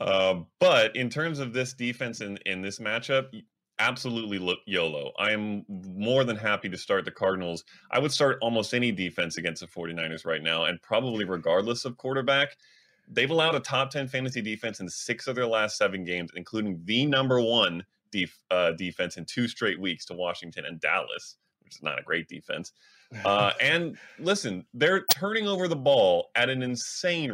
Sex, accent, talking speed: male, American, 180 wpm